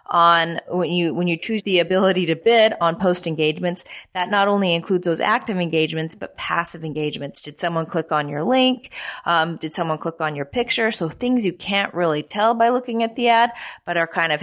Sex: female